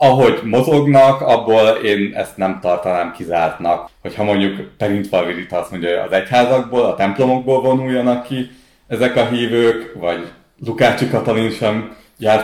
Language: Hungarian